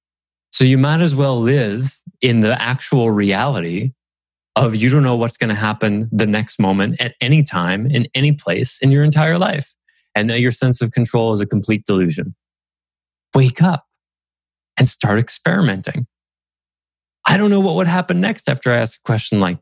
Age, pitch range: 30-49, 105-175 Hz